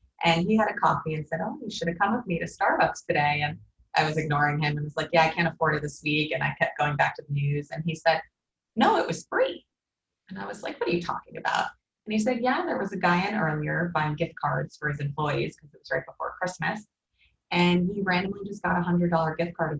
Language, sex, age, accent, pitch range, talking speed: English, female, 20-39, American, 155-195 Hz, 265 wpm